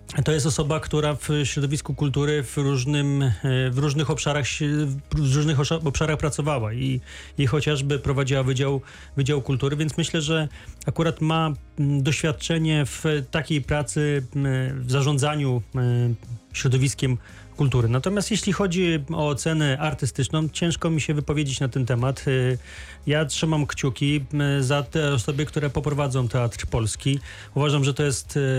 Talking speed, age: 130 wpm, 30-49